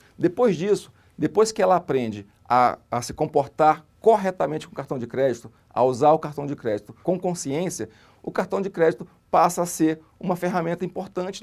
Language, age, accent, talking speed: Portuguese, 40-59, Brazilian, 180 wpm